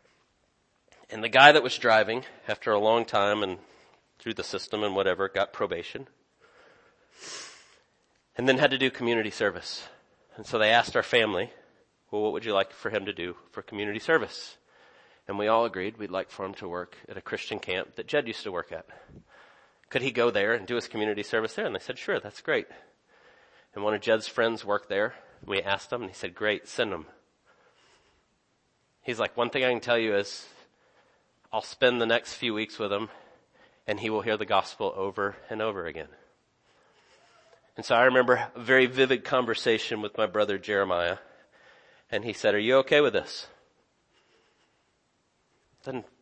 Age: 30-49